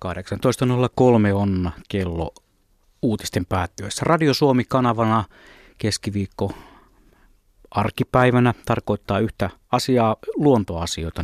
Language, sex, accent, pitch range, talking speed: Finnish, male, native, 95-120 Hz, 70 wpm